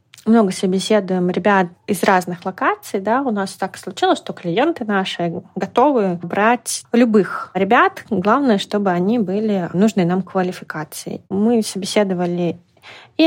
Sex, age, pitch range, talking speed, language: female, 20-39, 180-235 Hz, 125 wpm, Russian